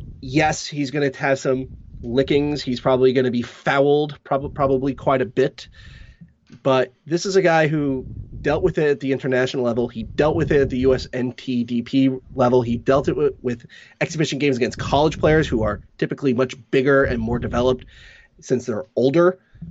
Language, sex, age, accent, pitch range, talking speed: English, male, 30-49, American, 120-145 Hz, 185 wpm